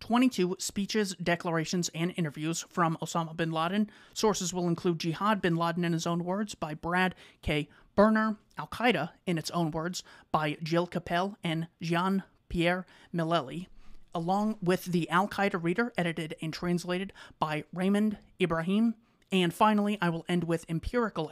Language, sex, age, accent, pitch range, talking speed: English, male, 30-49, American, 170-195 Hz, 145 wpm